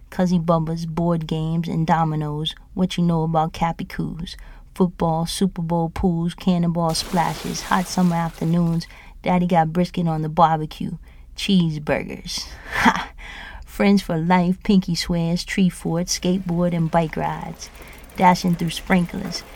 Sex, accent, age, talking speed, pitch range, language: female, American, 30-49, 125 wpm, 165-185 Hz, English